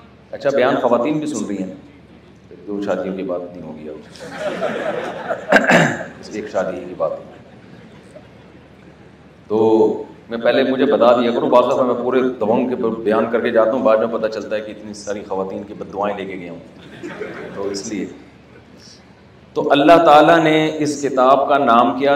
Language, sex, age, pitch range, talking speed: Urdu, male, 40-59, 105-140 Hz, 175 wpm